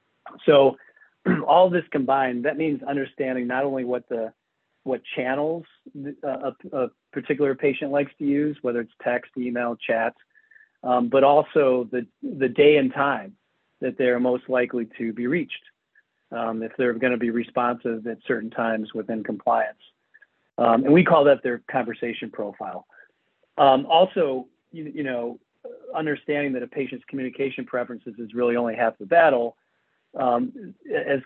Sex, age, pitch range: male, 40-59, 120-145 Hz